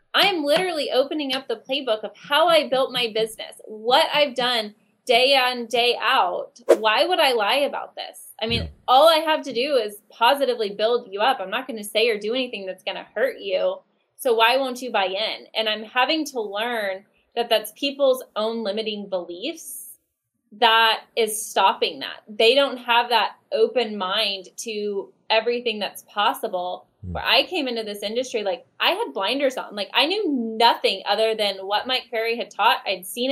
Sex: female